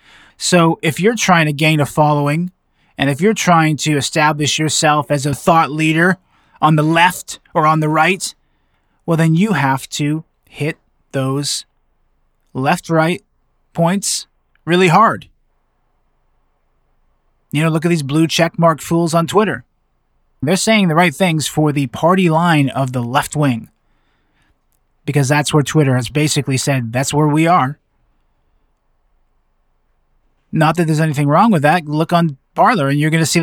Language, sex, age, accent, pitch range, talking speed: English, male, 20-39, American, 140-165 Hz, 155 wpm